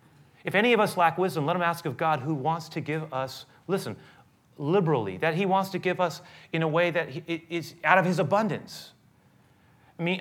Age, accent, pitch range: 30-49, American, 145-190 Hz